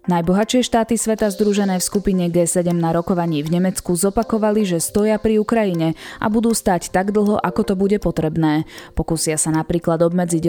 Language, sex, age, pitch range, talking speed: Slovak, female, 20-39, 170-210 Hz, 165 wpm